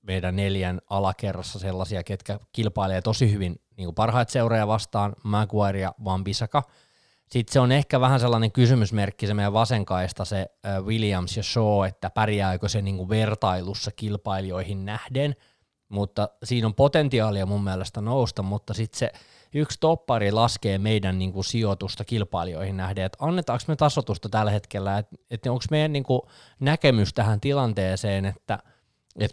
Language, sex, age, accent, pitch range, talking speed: Finnish, male, 20-39, native, 100-120 Hz, 150 wpm